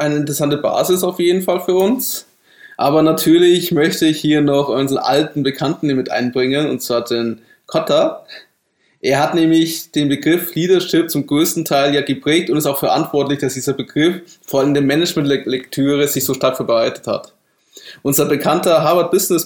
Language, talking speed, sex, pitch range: German, 170 wpm, male, 135-175 Hz